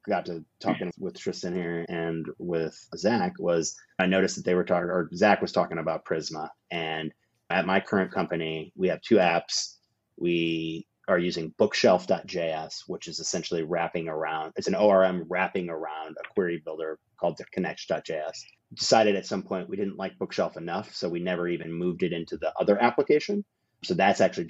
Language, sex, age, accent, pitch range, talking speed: English, male, 30-49, American, 85-100 Hz, 180 wpm